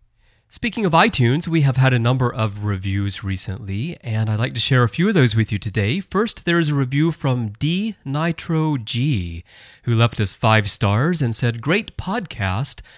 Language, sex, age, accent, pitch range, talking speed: English, male, 30-49, American, 110-155 Hz, 190 wpm